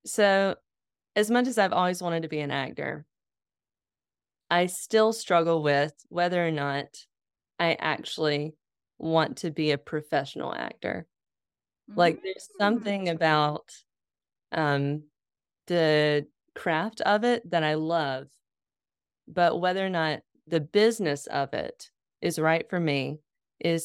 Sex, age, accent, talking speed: female, 20-39, American, 130 wpm